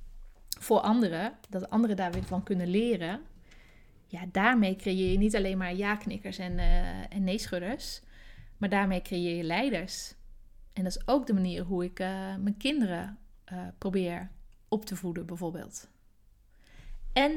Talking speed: 155 wpm